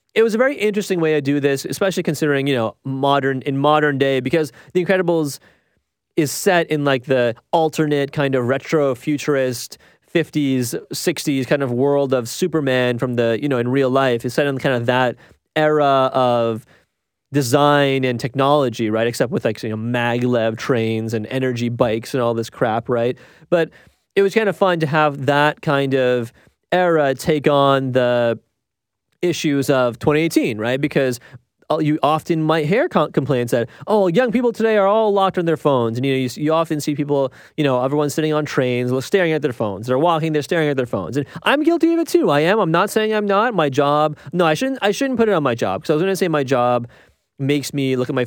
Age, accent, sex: 30-49, American, male